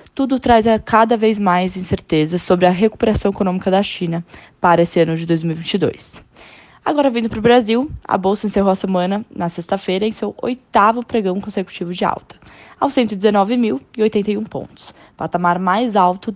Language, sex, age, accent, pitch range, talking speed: Portuguese, female, 10-29, Brazilian, 185-235 Hz, 155 wpm